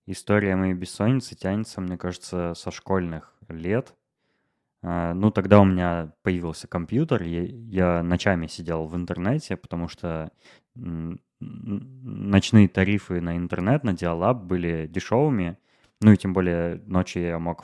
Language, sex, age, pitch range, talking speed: Russian, male, 20-39, 90-105 Hz, 130 wpm